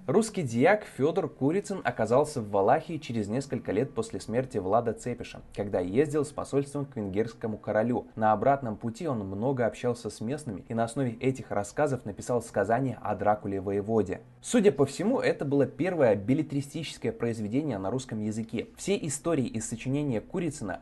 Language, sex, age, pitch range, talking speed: Russian, male, 20-39, 105-140 Hz, 160 wpm